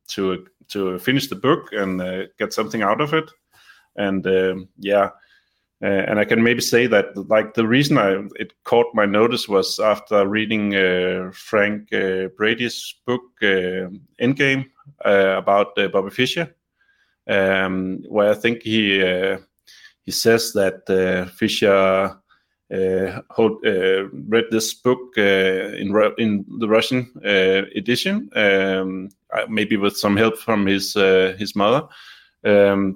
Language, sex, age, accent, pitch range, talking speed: English, male, 30-49, Danish, 95-115 Hz, 150 wpm